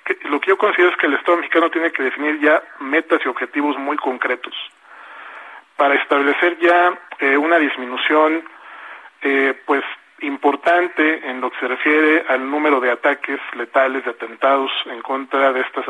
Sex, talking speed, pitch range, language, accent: male, 160 wpm, 135-160 Hz, Spanish, Mexican